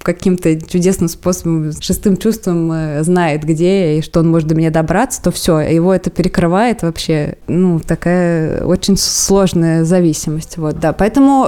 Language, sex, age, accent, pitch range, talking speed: Russian, female, 20-39, native, 160-180 Hz, 150 wpm